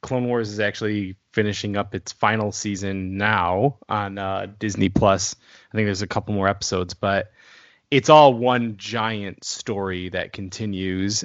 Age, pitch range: 20-39, 100-120 Hz